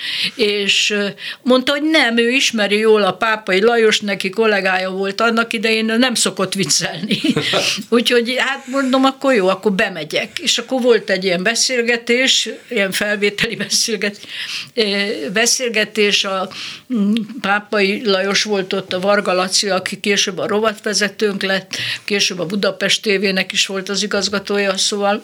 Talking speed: 130 wpm